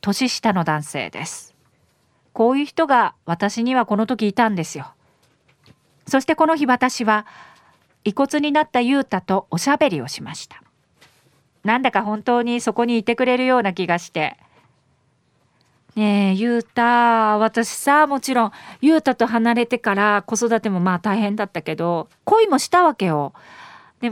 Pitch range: 190-260 Hz